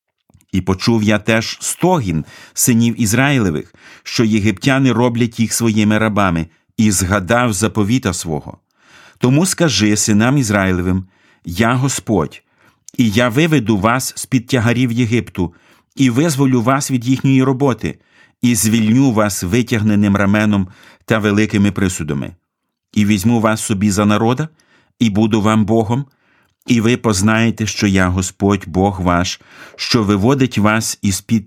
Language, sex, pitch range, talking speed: Ukrainian, male, 100-125 Hz, 125 wpm